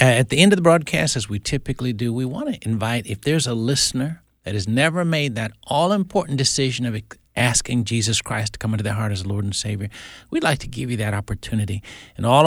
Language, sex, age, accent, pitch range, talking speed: English, male, 60-79, American, 105-130 Hz, 225 wpm